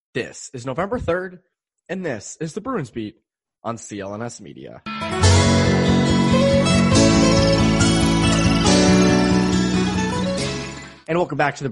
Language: English